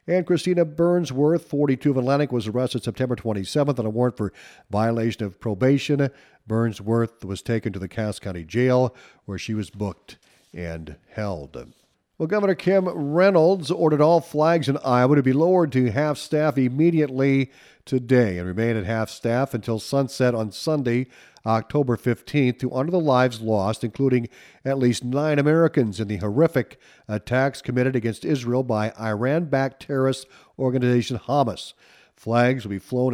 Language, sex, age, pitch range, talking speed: English, male, 50-69, 110-140 Hz, 150 wpm